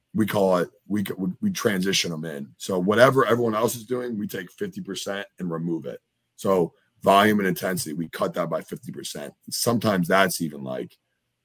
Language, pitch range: English, 90-110 Hz